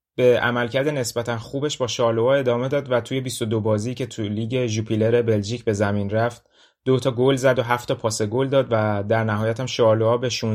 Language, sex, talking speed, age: Persian, male, 205 wpm, 30-49